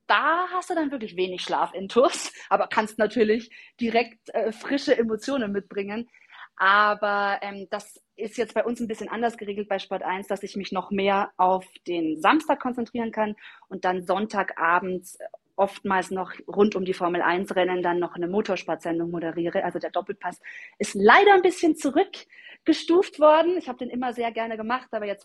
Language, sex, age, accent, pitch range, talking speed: German, female, 30-49, German, 195-245 Hz, 180 wpm